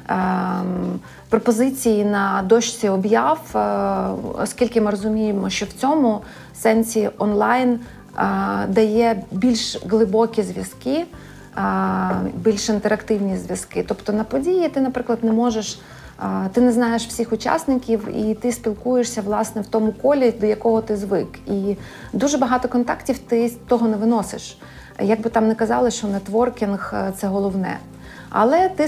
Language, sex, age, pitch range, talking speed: Ukrainian, female, 30-49, 200-235 Hz, 125 wpm